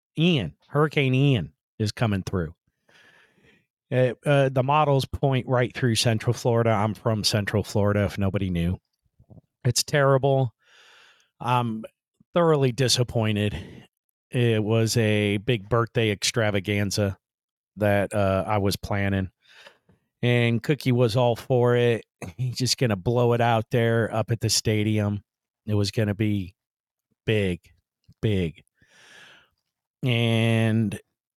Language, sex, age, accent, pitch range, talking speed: English, male, 40-59, American, 105-125 Hz, 120 wpm